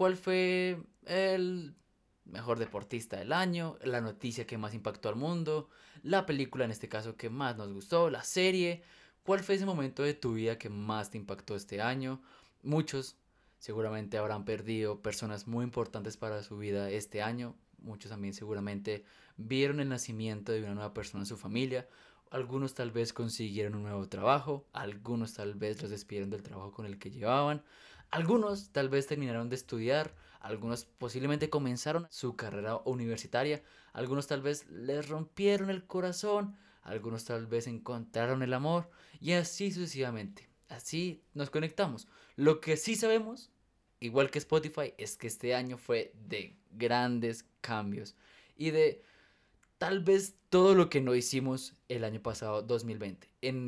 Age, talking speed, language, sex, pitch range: 20-39, 160 wpm, Spanish, male, 110-155 Hz